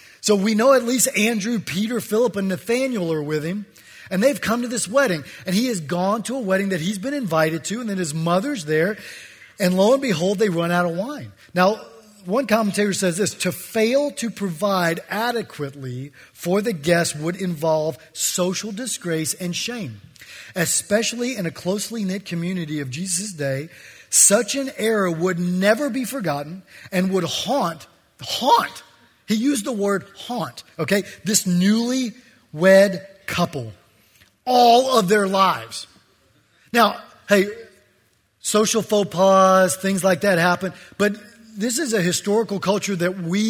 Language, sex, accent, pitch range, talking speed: English, male, American, 170-215 Hz, 160 wpm